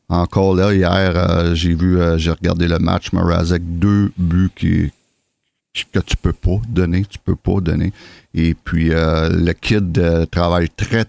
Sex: male